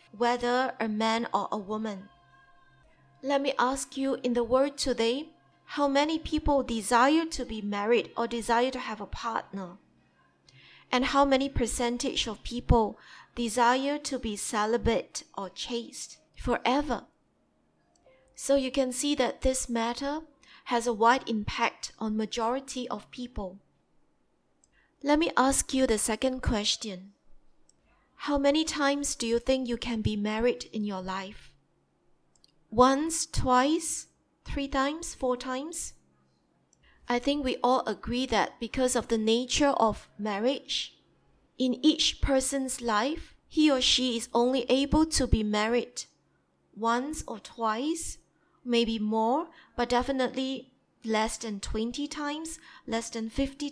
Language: English